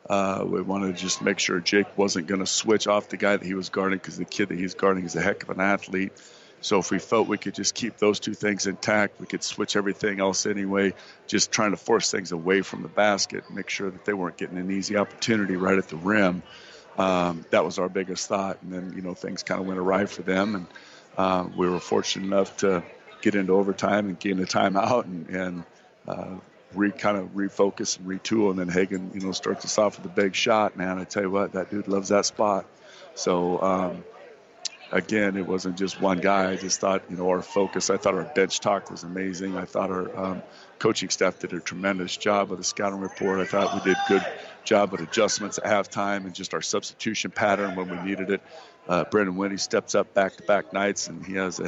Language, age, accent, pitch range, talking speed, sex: English, 50-69, American, 90-100 Hz, 230 wpm, male